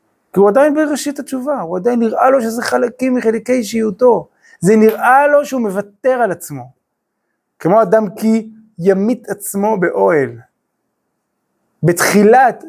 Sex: male